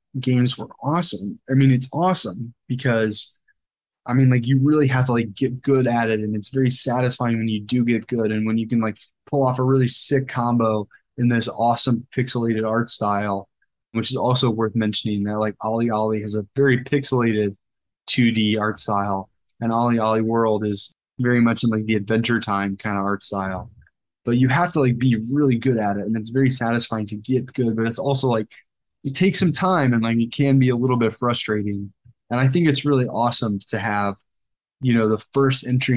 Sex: male